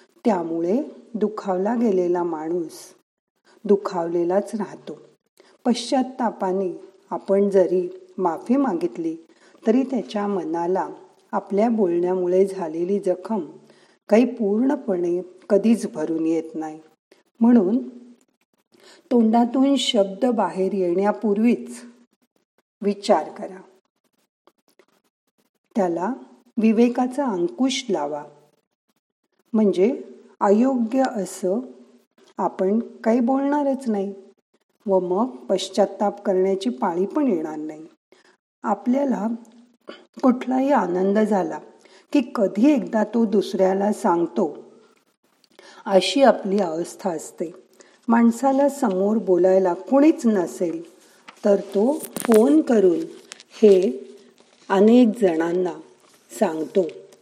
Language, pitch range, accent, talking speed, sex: Marathi, 185-240 Hz, native, 80 wpm, female